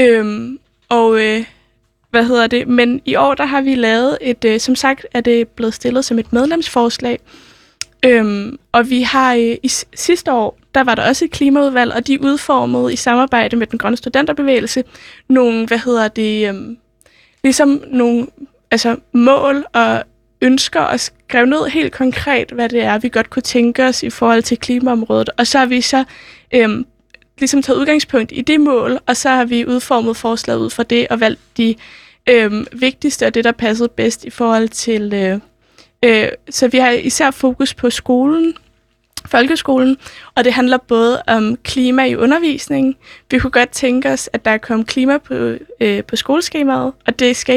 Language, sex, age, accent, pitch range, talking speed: Danish, female, 20-39, native, 230-265 Hz, 180 wpm